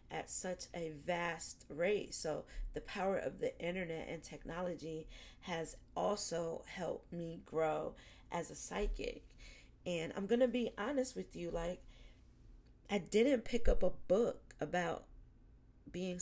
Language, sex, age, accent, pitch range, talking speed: English, female, 40-59, American, 170-215 Hz, 135 wpm